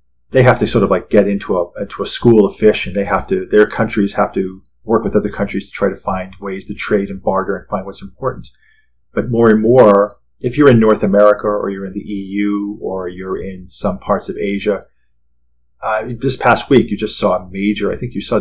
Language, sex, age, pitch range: English, male, 40-59, 95-105 Hz